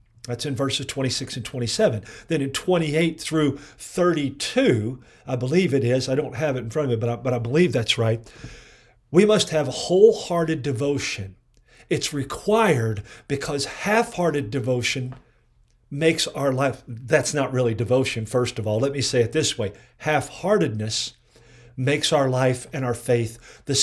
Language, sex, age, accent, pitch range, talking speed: English, male, 50-69, American, 125-160 Hz, 160 wpm